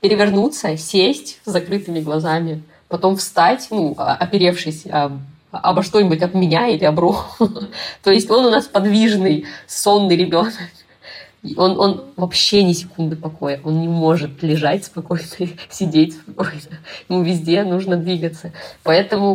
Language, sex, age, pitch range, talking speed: Russian, female, 20-39, 160-190 Hz, 135 wpm